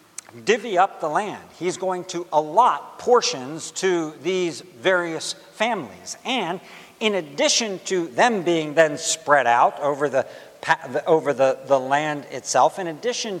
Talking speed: 130 wpm